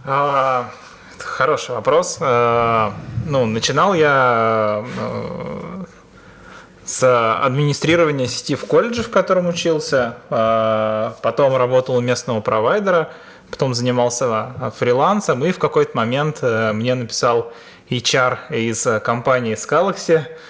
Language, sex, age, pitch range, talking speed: Russian, male, 20-39, 120-180 Hz, 90 wpm